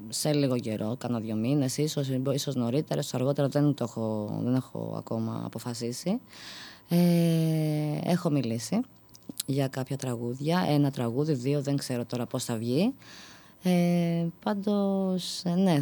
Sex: female